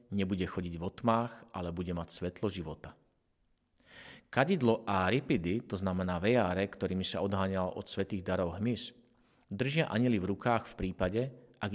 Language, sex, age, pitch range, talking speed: Slovak, male, 40-59, 90-120 Hz, 150 wpm